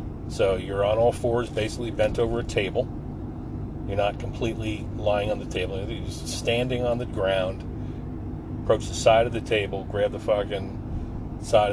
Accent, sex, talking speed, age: American, male, 170 wpm, 40-59